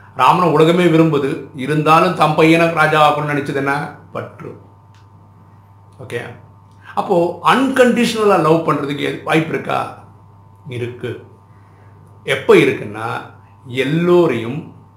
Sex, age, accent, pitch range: male, 50-69, native, 100-150 Hz